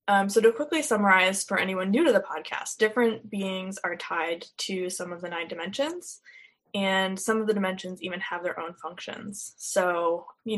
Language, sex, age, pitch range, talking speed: English, female, 10-29, 180-220 Hz, 185 wpm